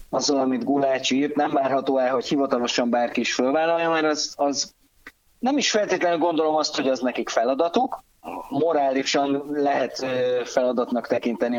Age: 30-49